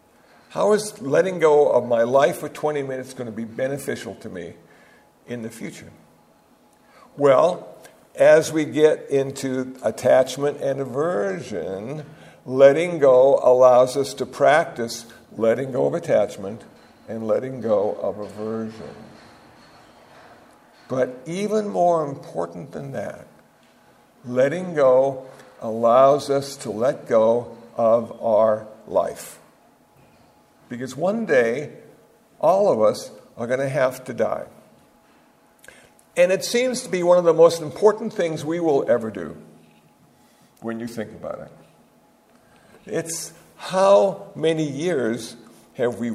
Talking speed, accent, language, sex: 125 wpm, American, English, male